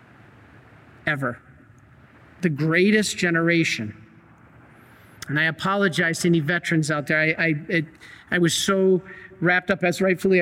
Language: English